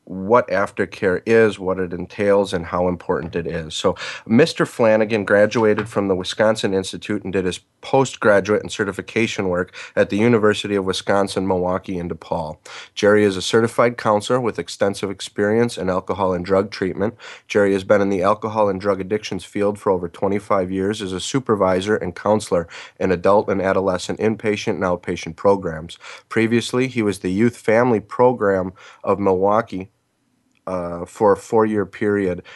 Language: English